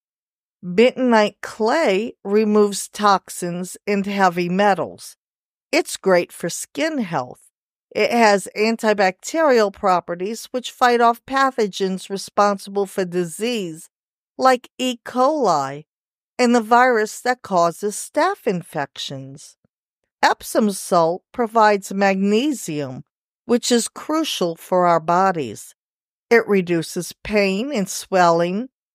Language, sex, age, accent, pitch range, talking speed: English, female, 50-69, American, 180-235 Hz, 100 wpm